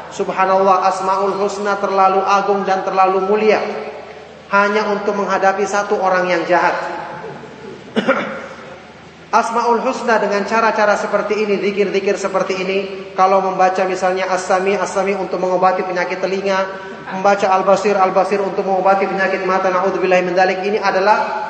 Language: Indonesian